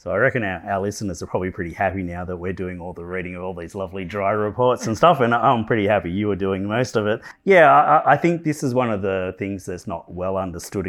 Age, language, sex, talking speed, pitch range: 30-49, English, male, 265 wpm, 90-110 Hz